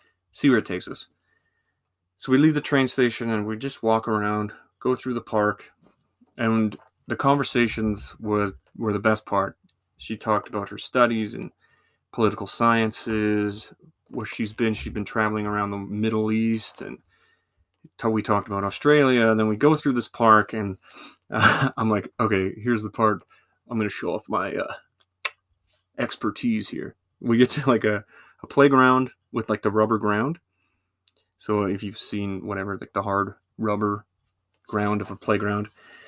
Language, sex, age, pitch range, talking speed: English, male, 30-49, 100-115 Hz, 165 wpm